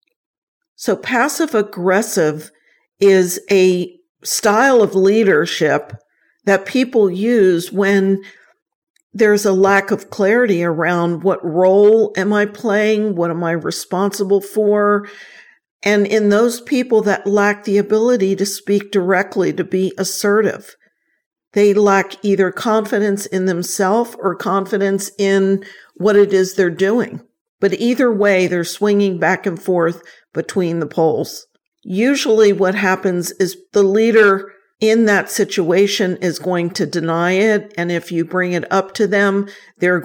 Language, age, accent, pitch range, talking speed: English, 50-69, American, 185-210 Hz, 135 wpm